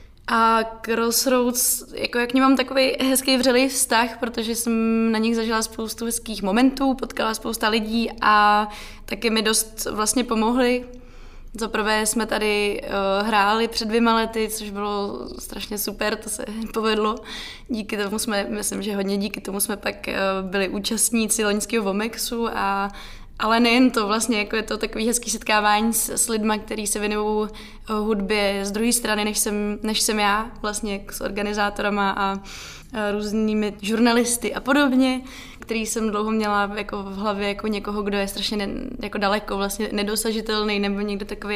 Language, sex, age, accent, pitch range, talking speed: Czech, female, 20-39, native, 205-225 Hz, 160 wpm